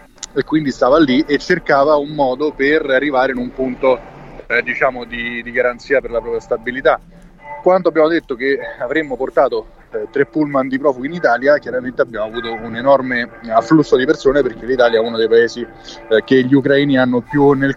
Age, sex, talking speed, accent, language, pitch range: 30-49, male, 190 wpm, native, Italian, 120-145 Hz